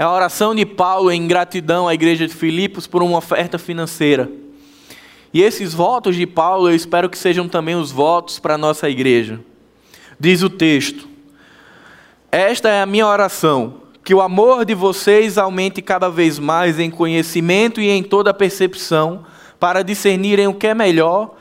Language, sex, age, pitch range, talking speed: Portuguese, male, 10-29, 170-200 Hz, 170 wpm